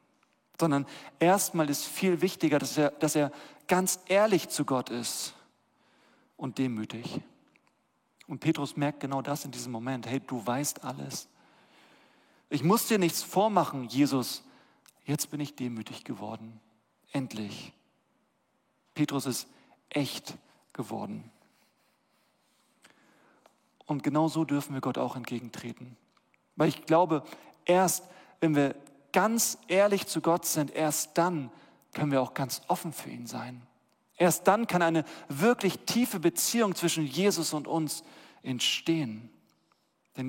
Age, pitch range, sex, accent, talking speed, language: 40-59, 130-170 Hz, male, German, 130 wpm, German